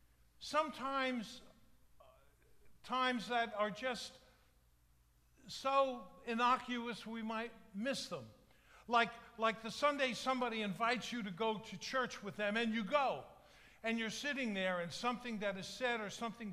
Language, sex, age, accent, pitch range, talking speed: English, male, 50-69, American, 180-240 Hz, 140 wpm